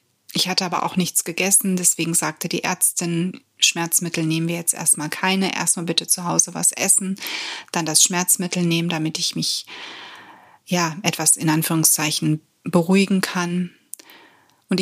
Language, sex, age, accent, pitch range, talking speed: German, female, 30-49, German, 170-190 Hz, 145 wpm